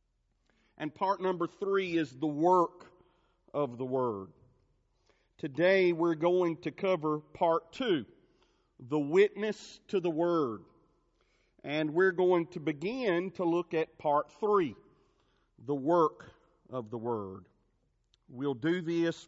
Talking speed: 125 wpm